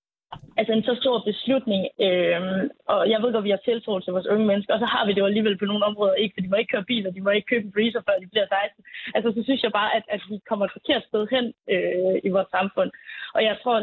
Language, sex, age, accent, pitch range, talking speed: Danish, female, 20-39, native, 200-240 Hz, 280 wpm